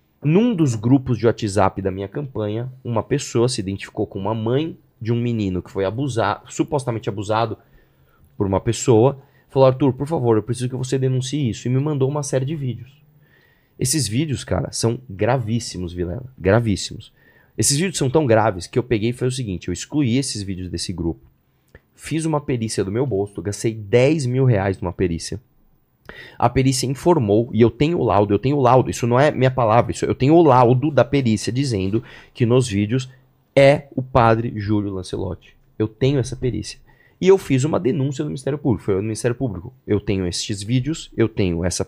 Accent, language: Brazilian, Portuguese